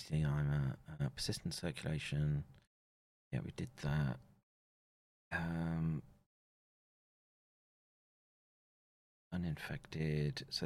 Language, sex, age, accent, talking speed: English, male, 30-49, British, 70 wpm